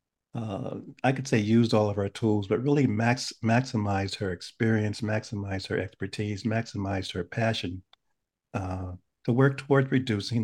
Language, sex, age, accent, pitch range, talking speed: English, male, 50-69, American, 100-125 Hz, 150 wpm